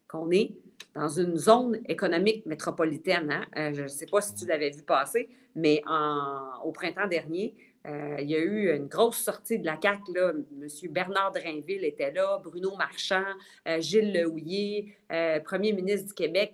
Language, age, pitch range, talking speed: French, 40-59, 160-215 Hz, 180 wpm